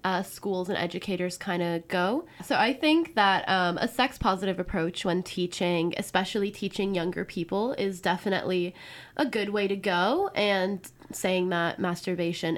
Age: 10-29